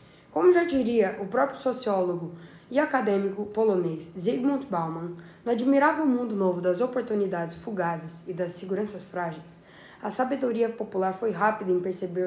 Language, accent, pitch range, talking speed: Portuguese, Brazilian, 180-225 Hz, 140 wpm